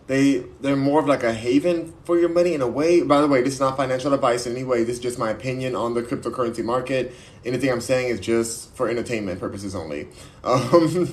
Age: 20-39